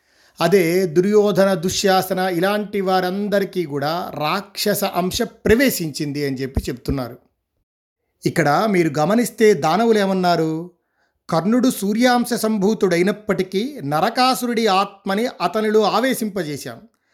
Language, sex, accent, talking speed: Telugu, male, native, 80 wpm